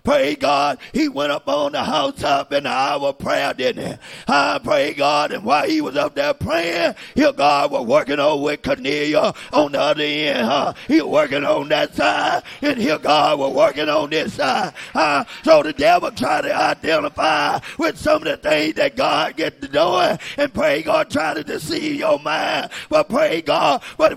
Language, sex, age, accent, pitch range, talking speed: English, male, 40-59, American, 240-310 Hz, 195 wpm